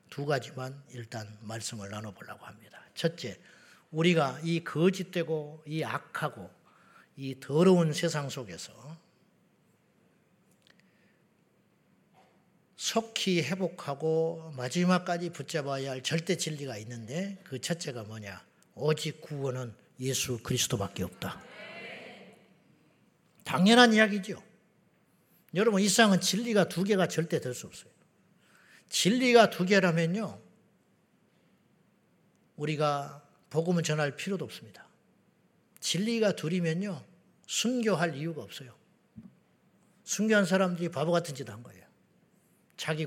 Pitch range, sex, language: 135-180 Hz, male, Korean